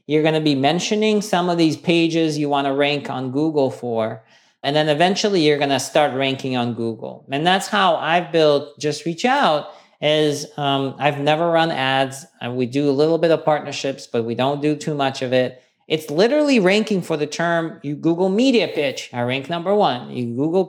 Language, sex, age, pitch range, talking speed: English, male, 40-59, 135-175 Hz, 205 wpm